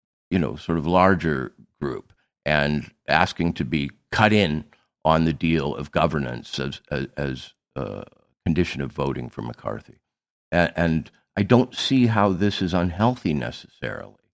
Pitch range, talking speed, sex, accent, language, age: 70-90 Hz, 150 wpm, male, American, English, 50-69